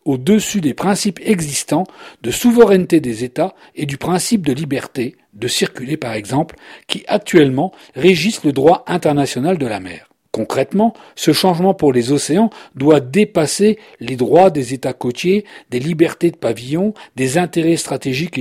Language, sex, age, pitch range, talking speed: French, male, 40-59, 130-190 Hz, 150 wpm